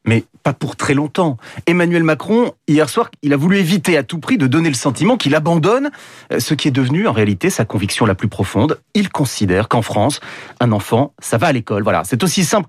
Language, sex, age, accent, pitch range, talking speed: French, male, 30-49, French, 120-175 Hz, 220 wpm